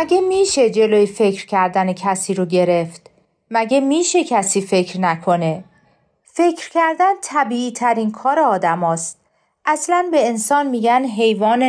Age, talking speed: 40-59, 130 wpm